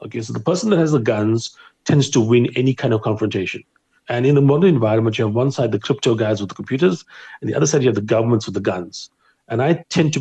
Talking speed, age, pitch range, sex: 265 wpm, 40-59, 105-125 Hz, male